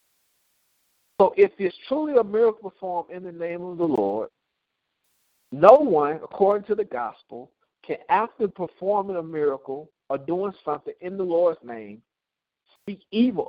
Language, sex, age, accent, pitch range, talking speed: English, male, 50-69, American, 145-215 Hz, 145 wpm